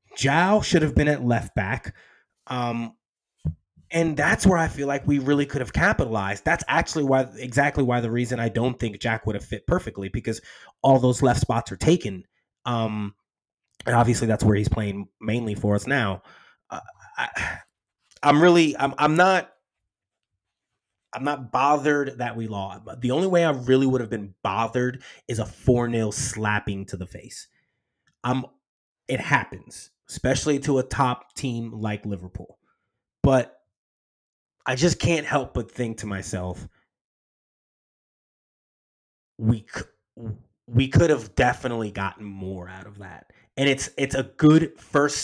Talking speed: 155 wpm